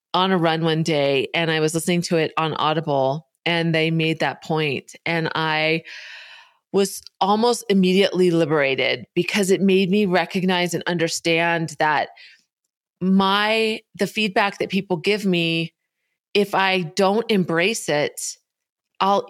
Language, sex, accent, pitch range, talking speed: English, female, American, 165-210 Hz, 140 wpm